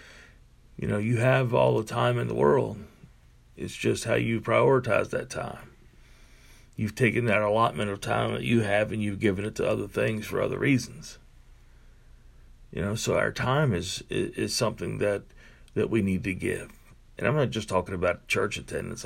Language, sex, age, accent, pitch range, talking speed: English, male, 50-69, American, 95-120 Hz, 185 wpm